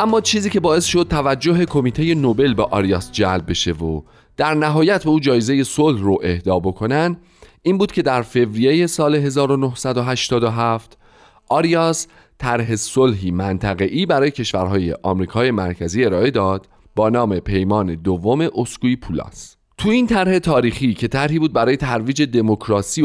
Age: 30-49